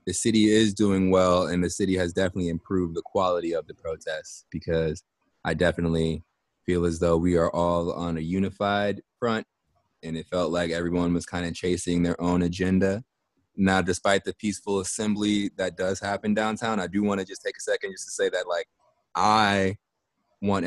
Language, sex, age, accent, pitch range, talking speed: English, male, 20-39, American, 85-100 Hz, 190 wpm